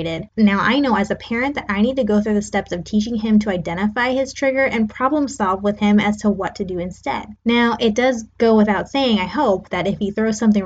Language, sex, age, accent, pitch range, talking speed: English, female, 10-29, American, 205-280 Hz, 250 wpm